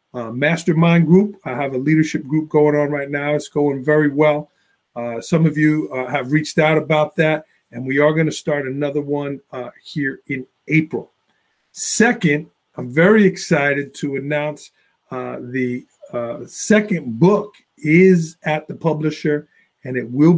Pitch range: 140-170 Hz